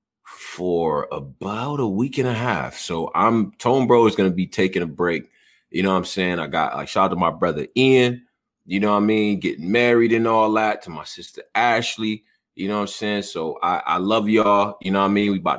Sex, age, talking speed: male, 30-49, 240 wpm